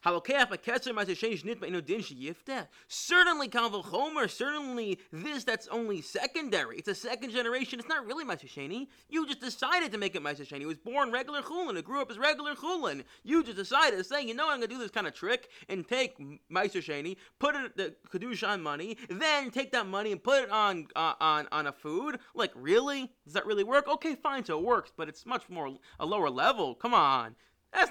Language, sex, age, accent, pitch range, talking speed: English, male, 30-49, American, 175-275 Hz, 200 wpm